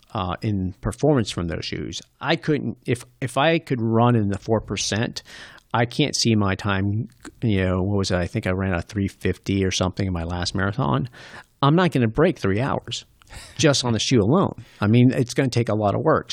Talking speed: 225 wpm